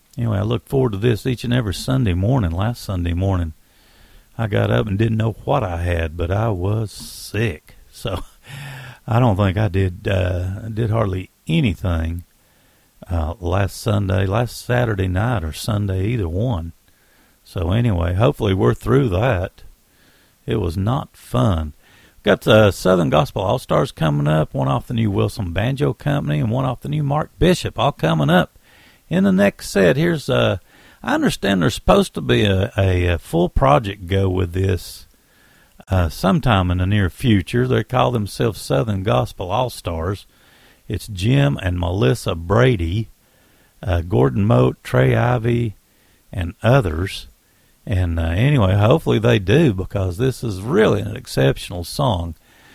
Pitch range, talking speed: 90-125 Hz, 160 wpm